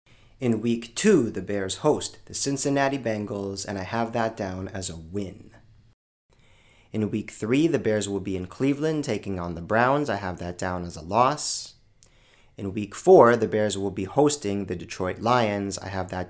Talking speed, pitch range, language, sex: 190 wpm, 95-125 Hz, English, male